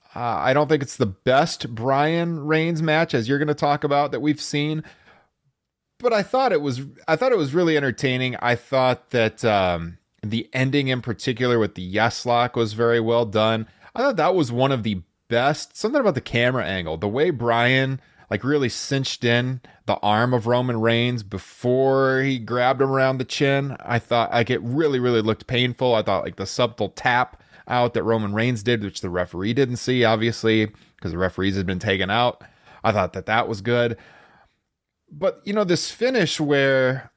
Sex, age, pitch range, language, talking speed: male, 30-49, 110-140 Hz, English, 195 wpm